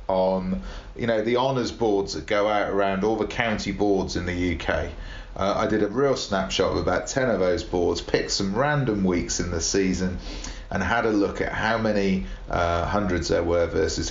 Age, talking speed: 40-59, 205 wpm